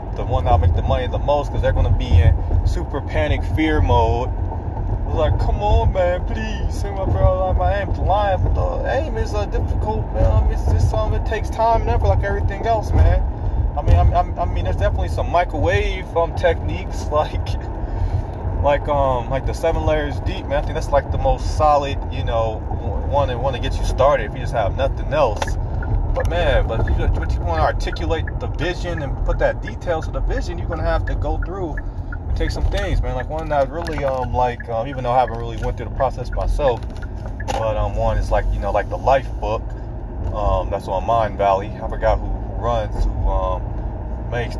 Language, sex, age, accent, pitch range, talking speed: English, male, 30-49, American, 90-105 Hz, 210 wpm